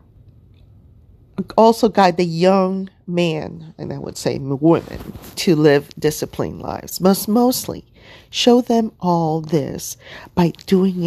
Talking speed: 120 wpm